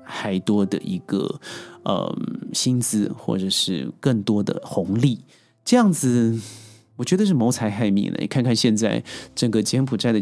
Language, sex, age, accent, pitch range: Chinese, male, 30-49, native, 110-160 Hz